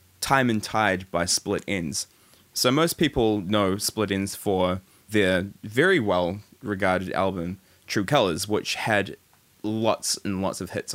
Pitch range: 95-115 Hz